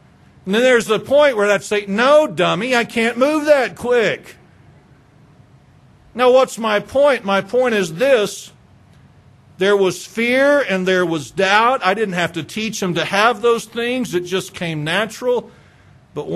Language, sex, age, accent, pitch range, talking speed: English, male, 50-69, American, 135-200 Hz, 165 wpm